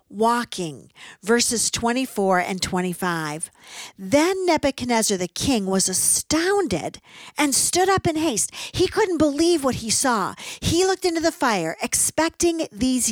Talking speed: 135 wpm